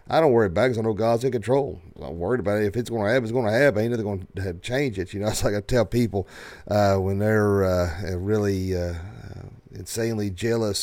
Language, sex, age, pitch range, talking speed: English, male, 40-59, 95-125 Hz, 255 wpm